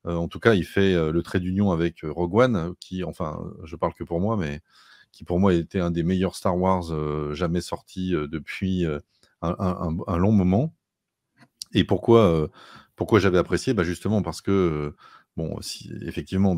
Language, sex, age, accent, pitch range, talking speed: French, male, 30-49, French, 80-100 Hz, 165 wpm